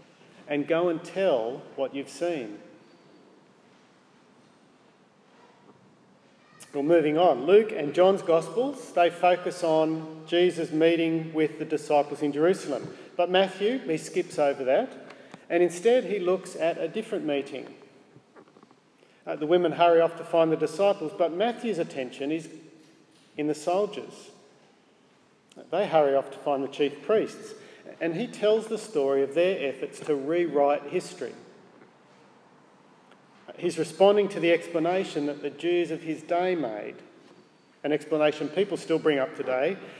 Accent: Australian